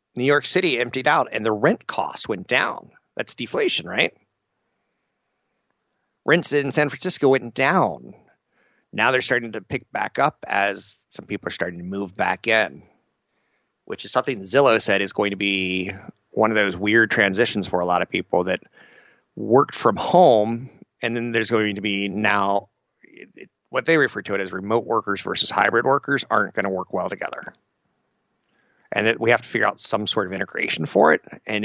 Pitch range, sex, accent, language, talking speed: 105-135 Hz, male, American, English, 185 wpm